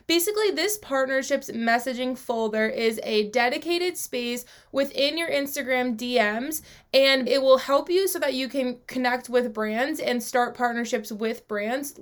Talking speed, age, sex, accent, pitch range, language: 150 wpm, 20-39, female, American, 230-280 Hz, English